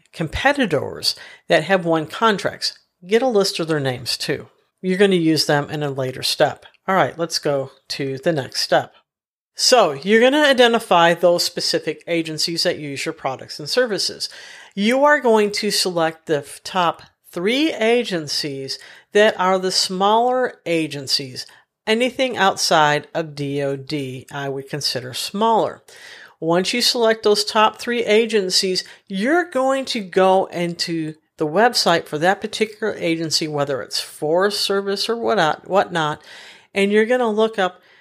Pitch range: 155-215 Hz